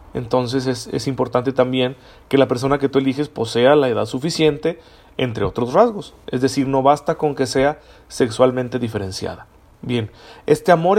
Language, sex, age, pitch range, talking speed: Spanish, male, 40-59, 120-155 Hz, 165 wpm